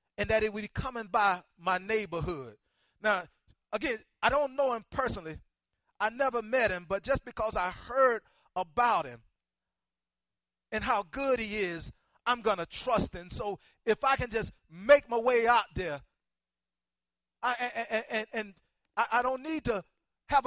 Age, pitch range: 30-49, 210-265 Hz